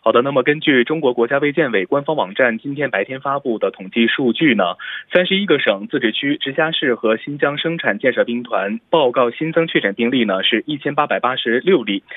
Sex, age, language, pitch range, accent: male, 20-39, Korean, 115-180 Hz, Chinese